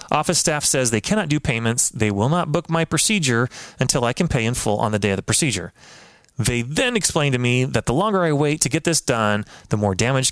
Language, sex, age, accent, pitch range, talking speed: English, male, 30-49, American, 115-165 Hz, 245 wpm